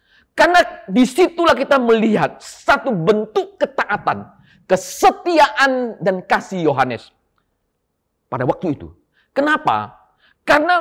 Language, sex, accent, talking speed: Indonesian, male, native, 90 wpm